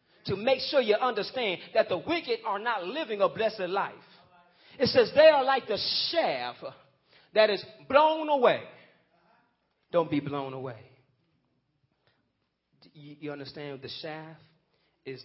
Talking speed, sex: 135 wpm, male